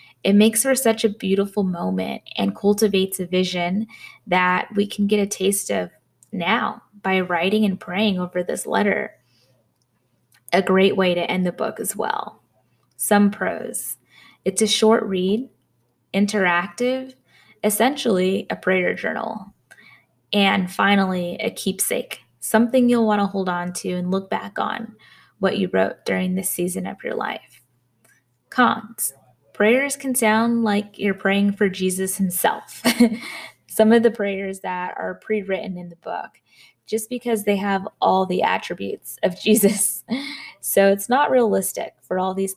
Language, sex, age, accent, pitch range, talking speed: English, female, 10-29, American, 180-220 Hz, 150 wpm